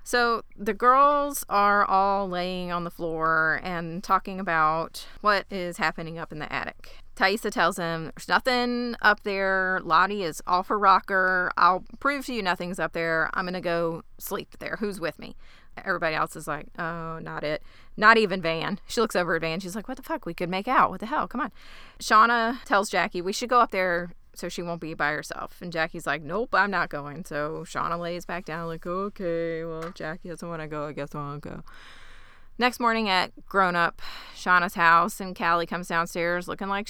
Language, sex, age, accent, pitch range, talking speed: English, female, 30-49, American, 165-215 Hz, 210 wpm